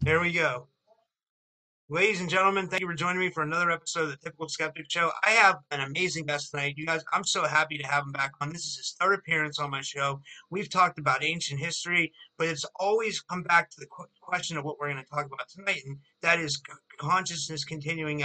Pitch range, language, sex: 140-165 Hz, English, male